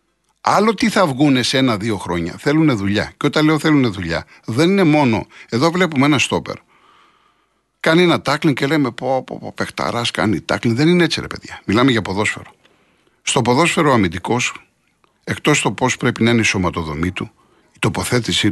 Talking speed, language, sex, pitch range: 170 wpm, Greek, male, 100-145 Hz